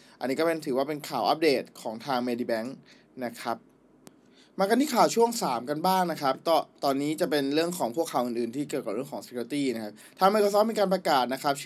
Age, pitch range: 20-39, 125-170 Hz